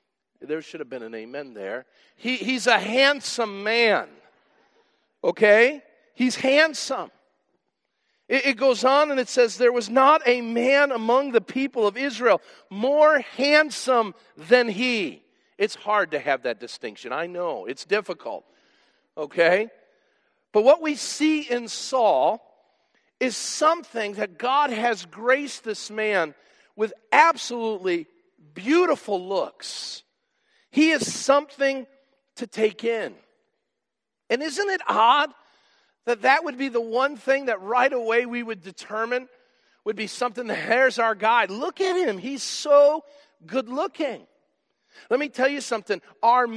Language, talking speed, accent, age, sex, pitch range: English, 140 wpm, American, 50-69, male, 215-280 Hz